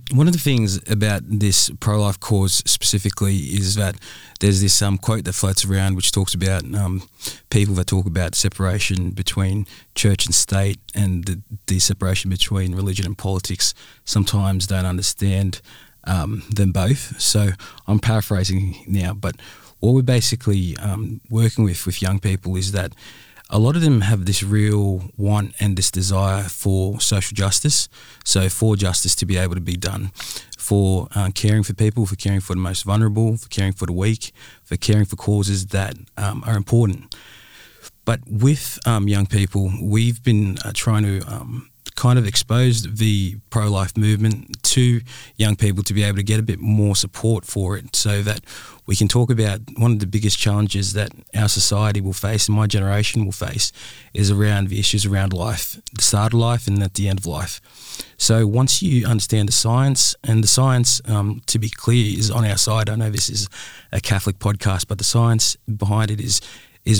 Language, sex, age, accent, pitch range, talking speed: English, male, 20-39, Australian, 95-110 Hz, 185 wpm